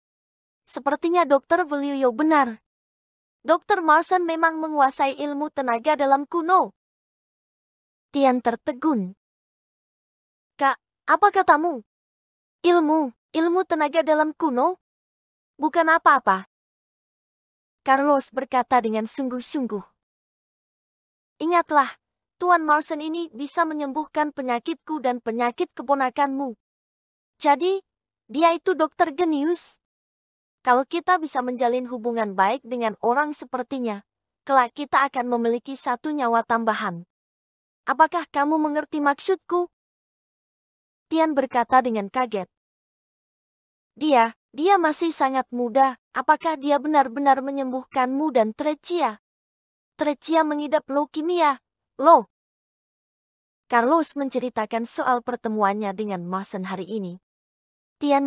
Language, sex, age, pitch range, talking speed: English, female, 20-39, 245-315 Hz, 95 wpm